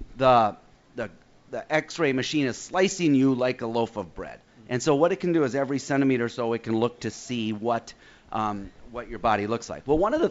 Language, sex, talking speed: English, male, 235 wpm